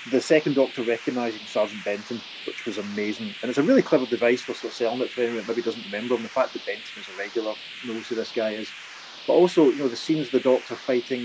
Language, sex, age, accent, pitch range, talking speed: English, male, 30-49, British, 115-135 Hz, 250 wpm